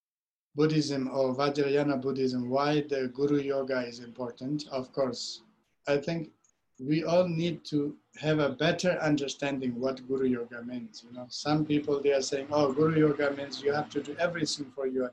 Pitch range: 130-150 Hz